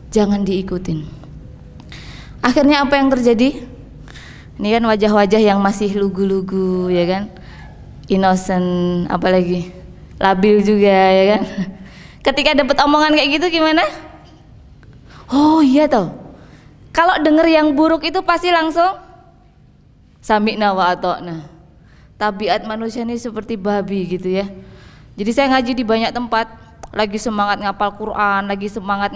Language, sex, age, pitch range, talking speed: Indonesian, female, 20-39, 195-245 Hz, 120 wpm